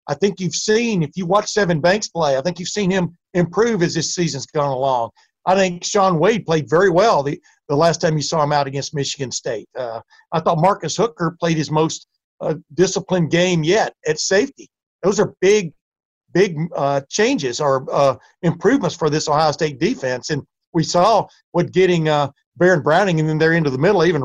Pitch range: 150-180 Hz